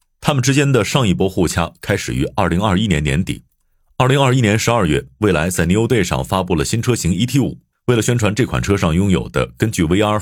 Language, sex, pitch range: Chinese, male, 75-120 Hz